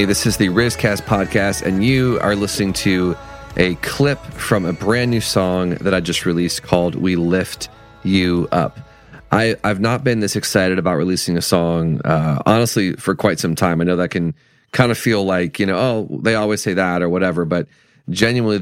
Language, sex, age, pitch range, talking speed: English, male, 30-49, 90-105 Hz, 195 wpm